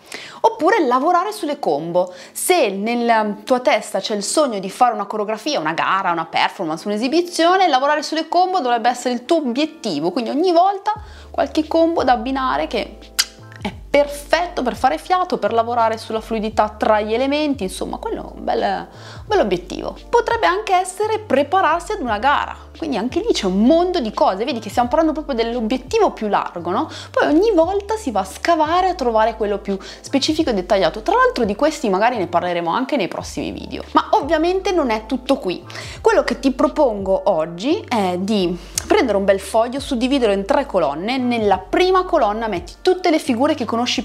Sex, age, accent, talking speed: female, 30-49, native, 185 wpm